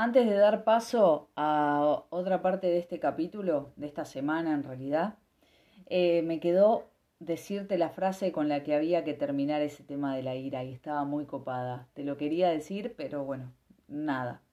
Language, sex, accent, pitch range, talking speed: Spanish, female, Argentinian, 150-210 Hz, 180 wpm